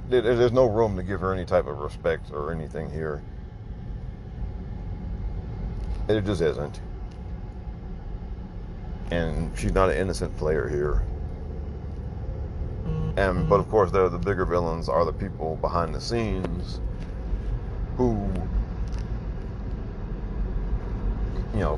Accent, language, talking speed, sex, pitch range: American, English, 105 wpm, male, 90-110 Hz